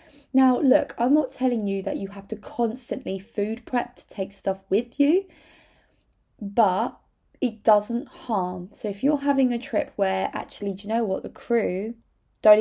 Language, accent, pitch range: English, British, 185-225 Hz